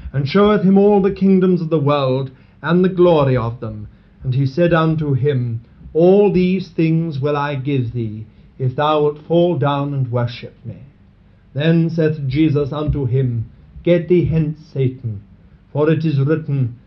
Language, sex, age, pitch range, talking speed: English, male, 50-69, 120-170 Hz, 165 wpm